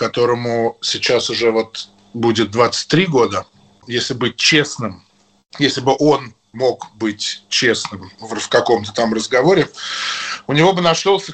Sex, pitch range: male, 115-145 Hz